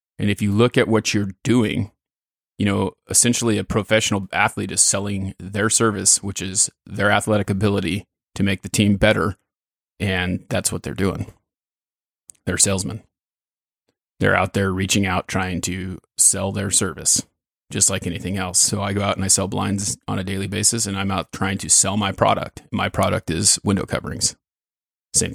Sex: male